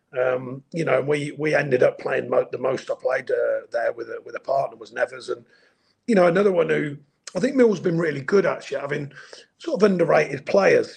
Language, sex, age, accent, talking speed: English, male, 40-59, British, 230 wpm